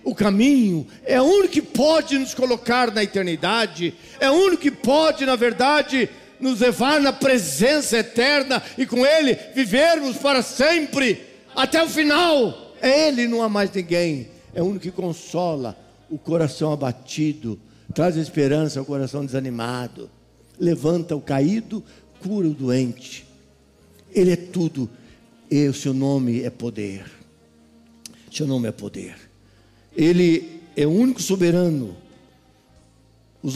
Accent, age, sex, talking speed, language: Brazilian, 60-79, male, 135 wpm, Portuguese